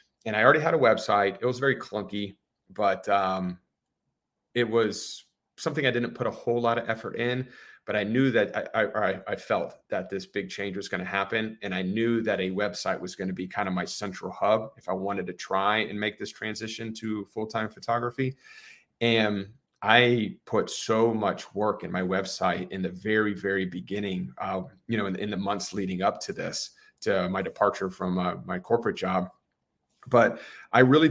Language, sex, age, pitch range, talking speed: English, male, 30-49, 100-125 Hz, 200 wpm